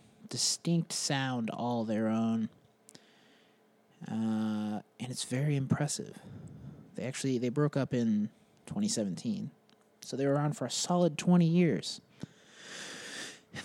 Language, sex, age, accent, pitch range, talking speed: English, male, 20-39, American, 115-180 Hz, 120 wpm